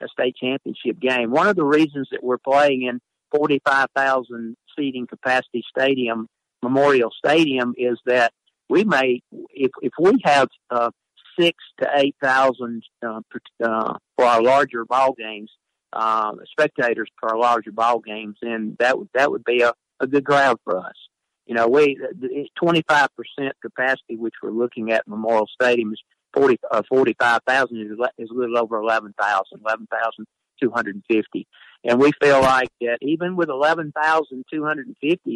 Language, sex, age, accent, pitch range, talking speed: English, male, 50-69, American, 115-140 Hz, 150 wpm